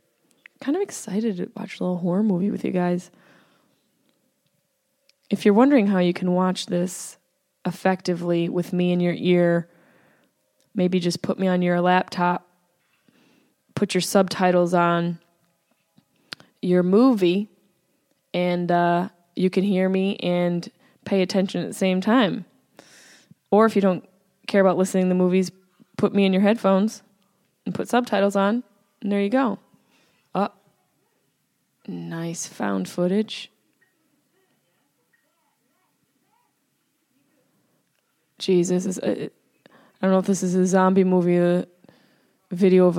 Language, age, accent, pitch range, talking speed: English, 20-39, American, 175-205 Hz, 130 wpm